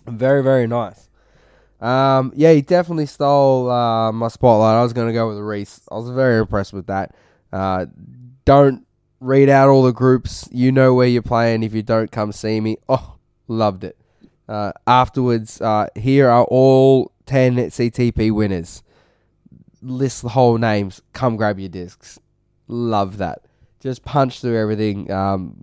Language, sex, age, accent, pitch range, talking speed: English, male, 20-39, Australian, 105-130 Hz, 160 wpm